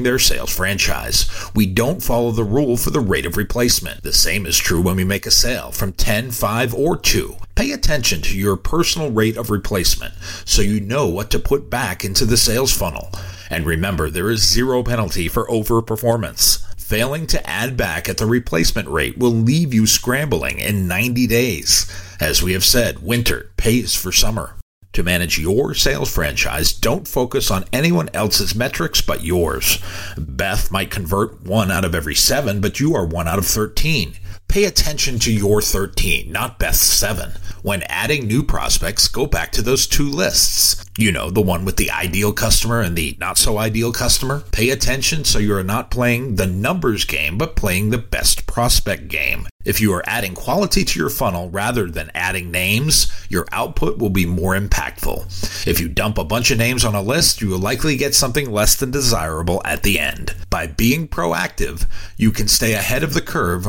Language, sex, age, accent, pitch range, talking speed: English, male, 50-69, American, 90-120 Hz, 185 wpm